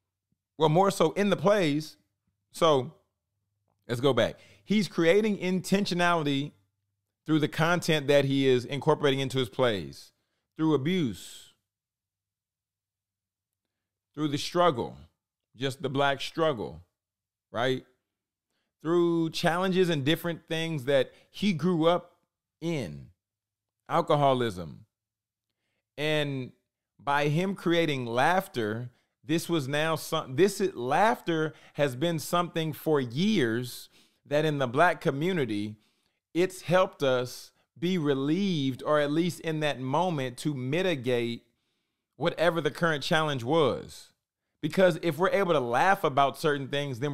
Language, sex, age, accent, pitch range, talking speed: English, male, 40-59, American, 115-165 Hz, 120 wpm